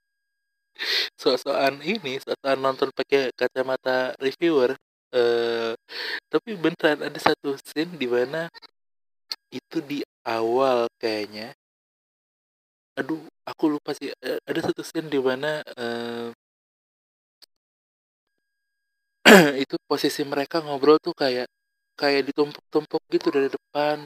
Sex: male